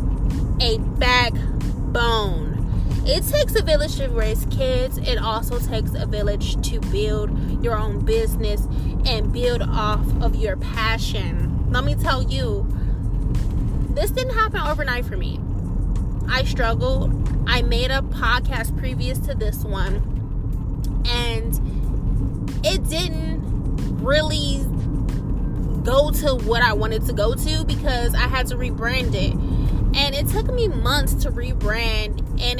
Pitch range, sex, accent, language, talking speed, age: 90-115 Hz, female, American, English, 130 wpm, 20-39